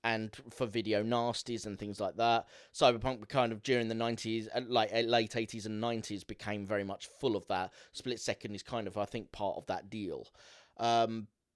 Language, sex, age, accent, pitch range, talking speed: English, male, 30-49, British, 110-130 Hz, 190 wpm